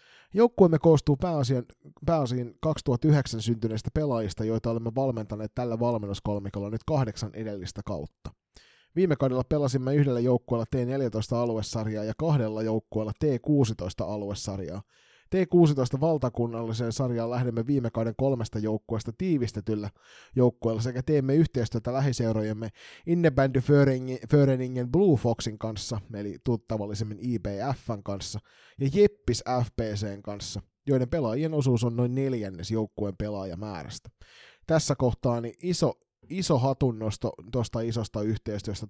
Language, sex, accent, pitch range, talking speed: Finnish, male, native, 105-130 Hz, 105 wpm